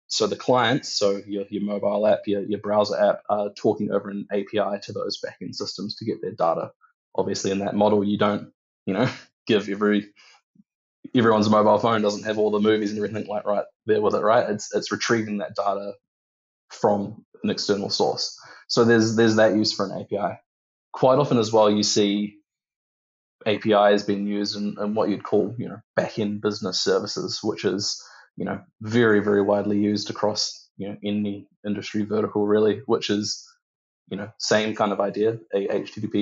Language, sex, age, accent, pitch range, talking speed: English, male, 20-39, Australian, 100-110 Hz, 185 wpm